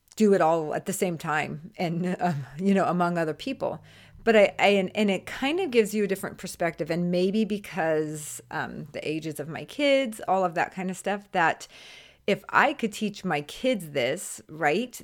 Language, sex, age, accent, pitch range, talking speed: English, female, 30-49, American, 155-195 Hz, 200 wpm